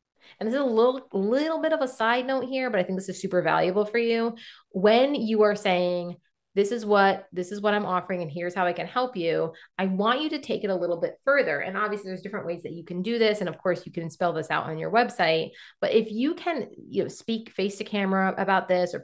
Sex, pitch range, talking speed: female, 180-230 Hz, 265 wpm